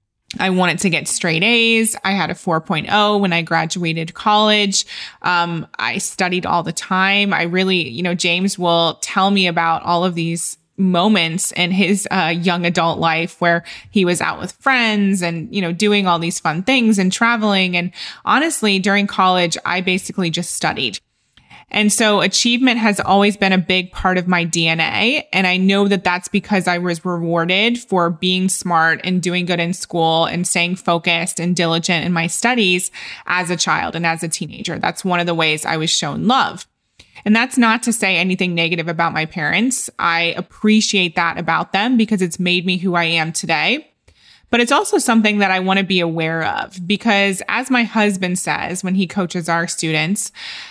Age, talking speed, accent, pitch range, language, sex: 20-39, 190 wpm, American, 170-205 Hz, English, female